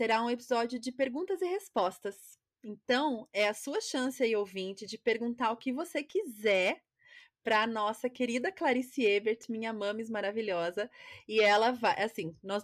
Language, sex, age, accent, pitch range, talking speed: Portuguese, female, 30-49, Brazilian, 195-235 Hz, 160 wpm